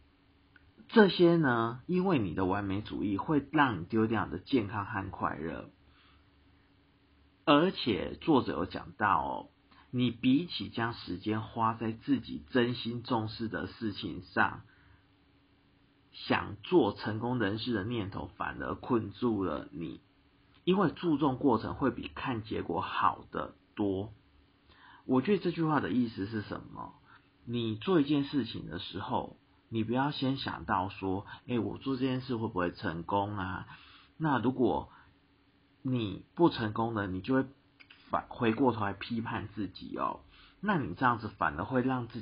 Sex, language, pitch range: male, Chinese, 95-130 Hz